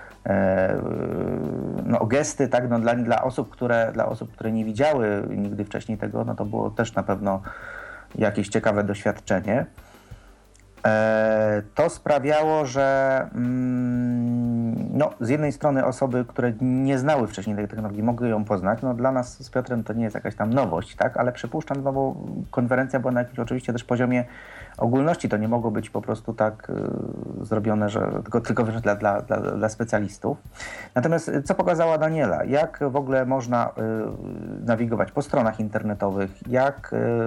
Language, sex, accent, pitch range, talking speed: Polish, male, native, 110-130 Hz, 160 wpm